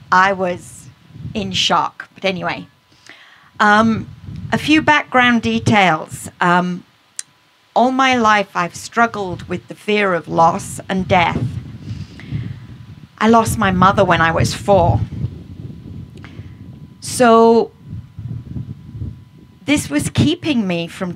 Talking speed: 110 wpm